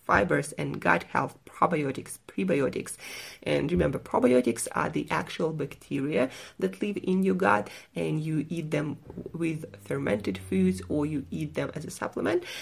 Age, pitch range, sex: 30-49, 145-190 Hz, female